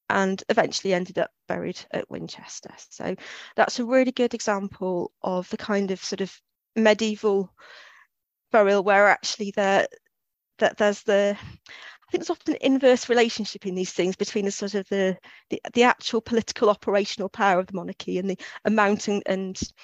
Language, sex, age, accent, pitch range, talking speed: English, female, 30-49, British, 190-220 Hz, 165 wpm